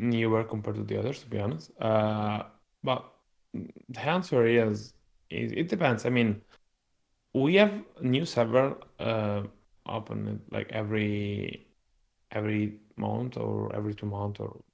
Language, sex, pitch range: English, male, 105-120 Hz